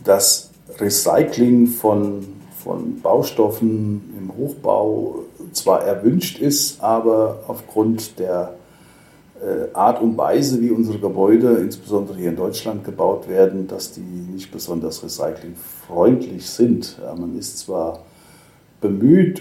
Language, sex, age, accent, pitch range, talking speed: German, male, 50-69, German, 95-120 Hz, 110 wpm